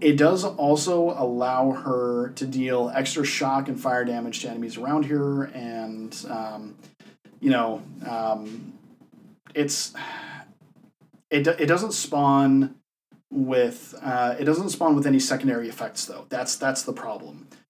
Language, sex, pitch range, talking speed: English, male, 115-150 Hz, 135 wpm